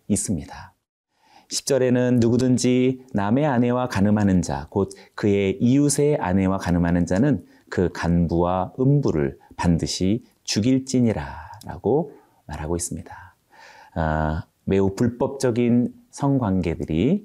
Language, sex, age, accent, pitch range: Korean, male, 30-49, native, 85-130 Hz